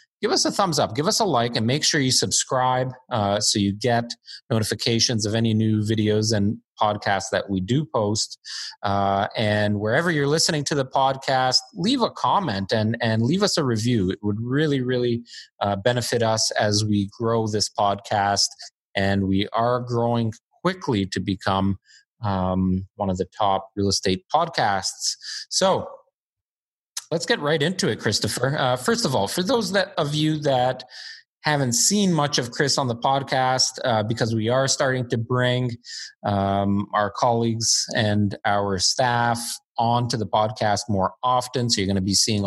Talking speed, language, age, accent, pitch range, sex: 170 wpm, English, 30-49, American, 100-125 Hz, male